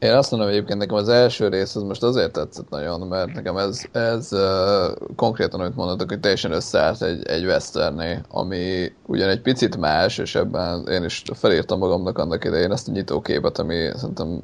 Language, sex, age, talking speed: Hungarian, male, 20-39, 185 wpm